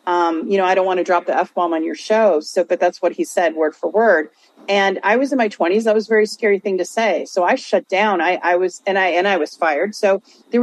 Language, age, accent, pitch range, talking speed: English, 40-59, American, 180-220 Hz, 295 wpm